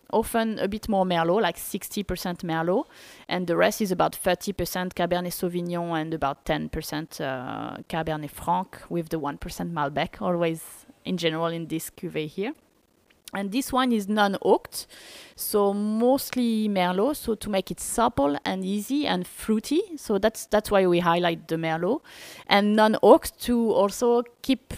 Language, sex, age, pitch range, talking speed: English, female, 20-39, 175-220 Hz, 155 wpm